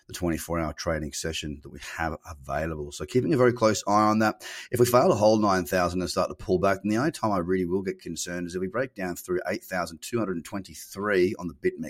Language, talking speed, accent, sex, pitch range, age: English, 215 wpm, Australian, male, 85-110 Hz, 30-49